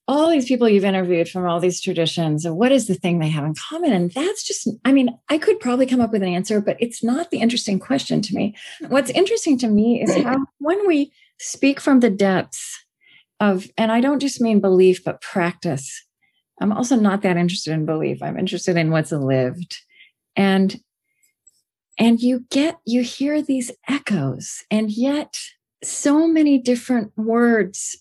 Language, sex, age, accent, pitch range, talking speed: English, female, 40-59, American, 180-265 Hz, 185 wpm